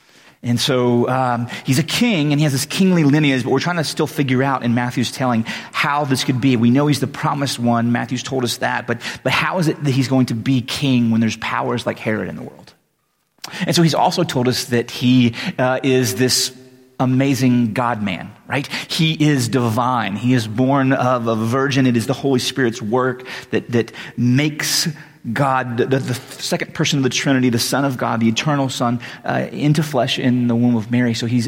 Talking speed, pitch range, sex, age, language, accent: 215 wpm, 120-140 Hz, male, 30-49, English, American